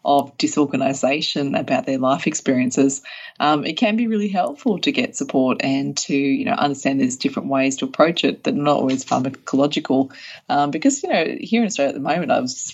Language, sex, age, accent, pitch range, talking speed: English, female, 20-39, Australian, 140-230 Hz, 205 wpm